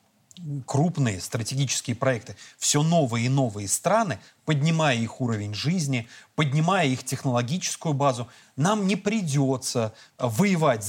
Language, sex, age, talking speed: Russian, male, 30-49, 110 wpm